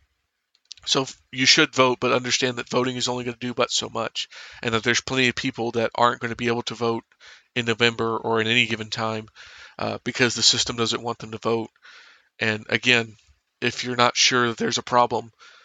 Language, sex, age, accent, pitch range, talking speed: English, male, 40-59, American, 115-125 Hz, 215 wpm